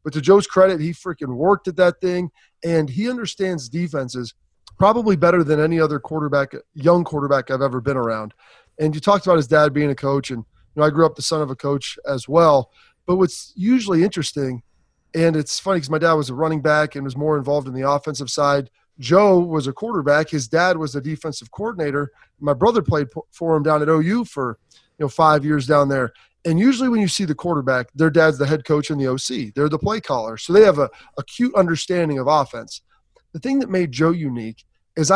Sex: male